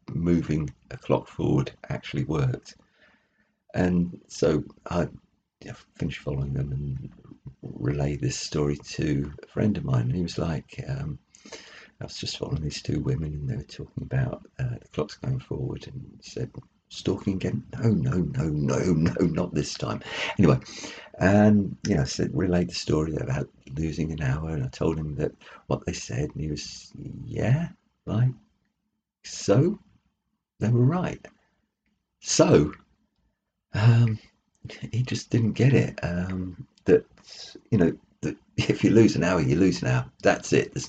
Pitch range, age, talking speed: 75-125 Hz, 50-69, 155 wpm